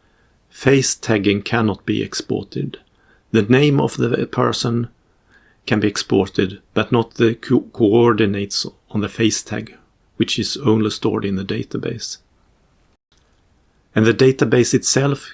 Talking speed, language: 125 wpm, English